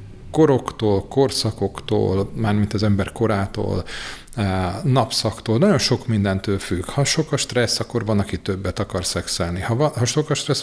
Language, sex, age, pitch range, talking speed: Hungarian, male, 40-59, 100-120 Hz, 140 wpm